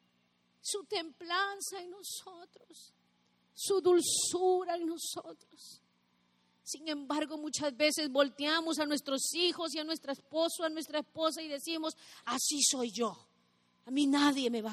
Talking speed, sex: 135 wpm, female